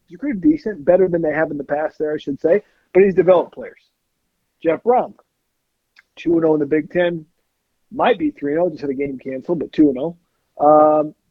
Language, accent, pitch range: English, American, 140-180 Hz